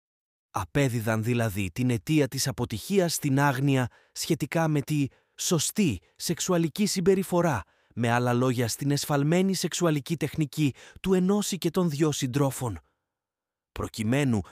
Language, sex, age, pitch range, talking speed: Greek, male, 30-49, 115-155 Hz, 115 wpm